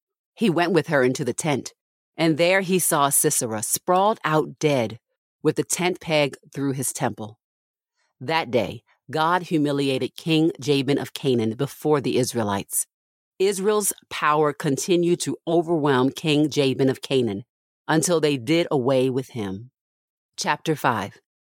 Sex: female